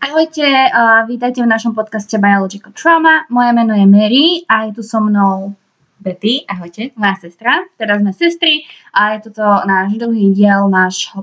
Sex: female